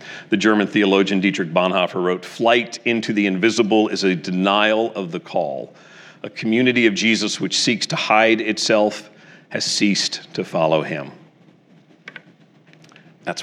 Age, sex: 40-59, male